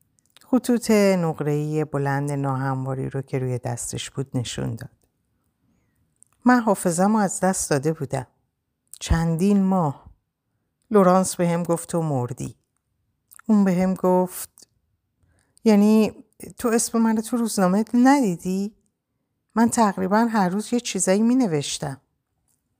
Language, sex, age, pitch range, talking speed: Persian, female, 50-69, 135-190 Hz, 115 wpm